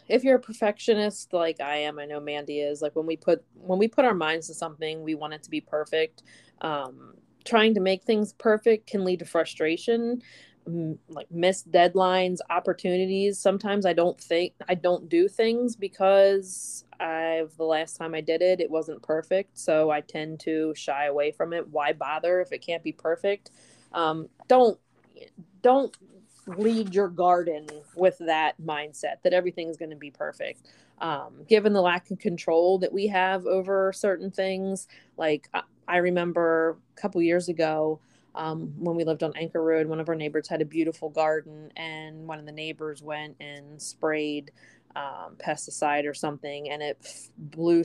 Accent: American